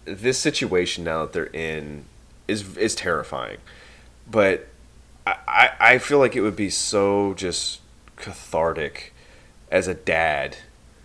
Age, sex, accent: 20-39, male, American